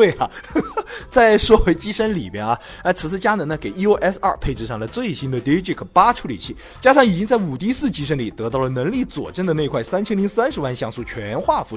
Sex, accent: male, native